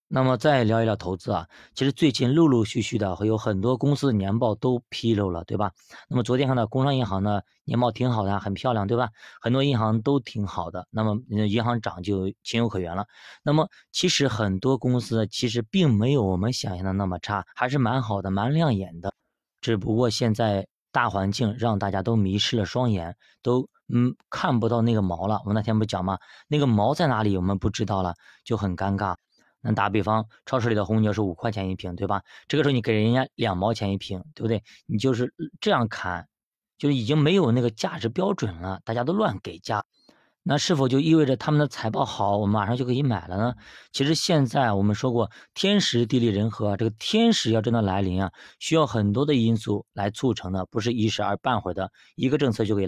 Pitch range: 100-130 Hz